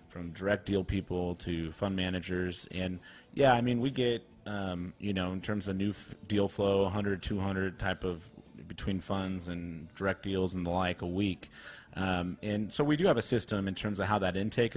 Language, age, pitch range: English, 30-49, 90-110 Hz